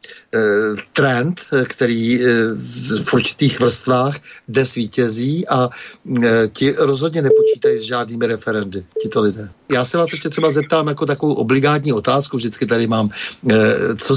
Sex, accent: male, native